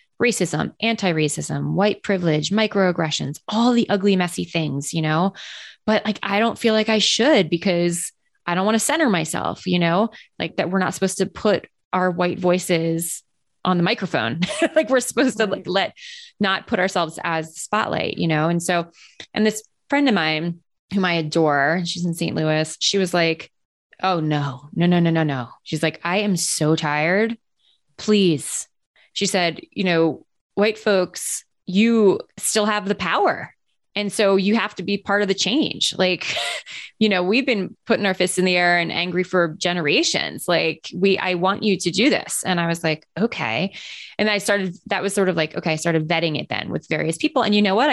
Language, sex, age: English, female, 20-39